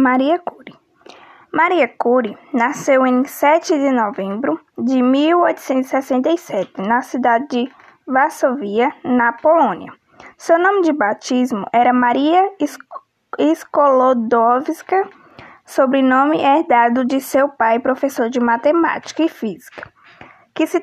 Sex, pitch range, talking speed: female, 255-320 Hz, 100 wpm